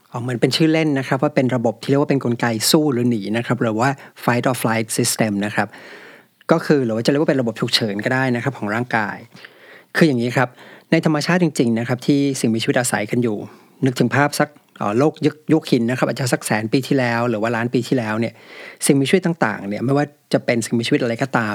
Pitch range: 115-145 Hz